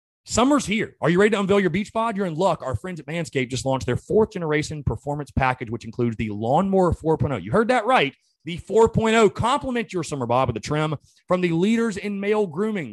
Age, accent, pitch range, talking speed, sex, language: 30-49, American, 120-195 Hz, 225 wpm, male, English